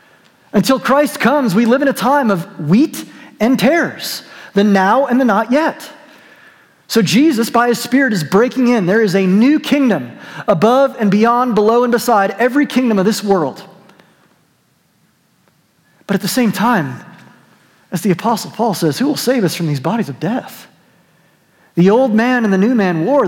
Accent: American